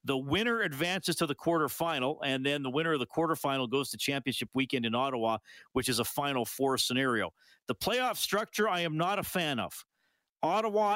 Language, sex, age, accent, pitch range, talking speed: English, male, 50-69, American, 130-165 Hz, 190 wpm